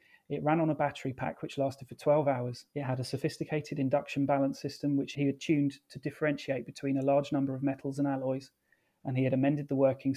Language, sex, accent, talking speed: English, male, British, 225 wpm